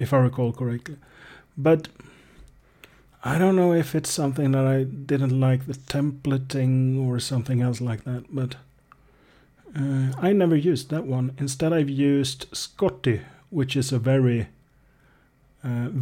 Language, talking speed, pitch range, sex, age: English, 140 wpm, 120-140 Hz, male, 40-59